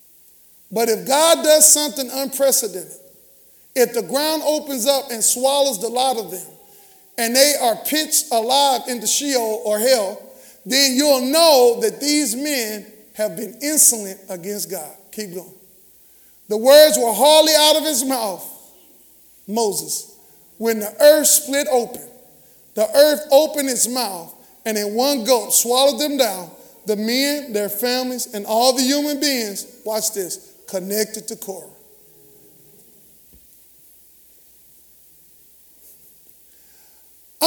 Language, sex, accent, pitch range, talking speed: English, male, American, 225-285 Hz, 125 wpm